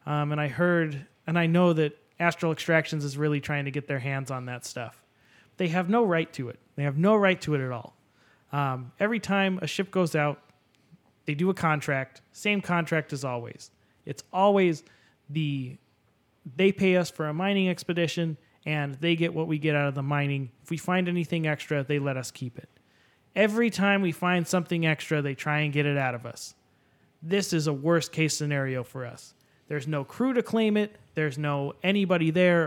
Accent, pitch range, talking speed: American, 140-175 Hz, 205 wpm